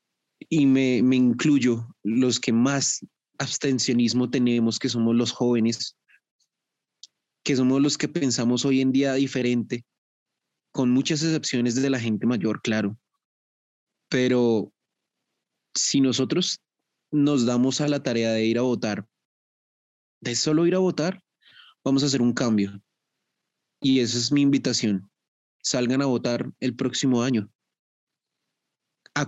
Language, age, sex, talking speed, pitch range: Spanish, 20-39, male, 130 wpm, 115-135 Hz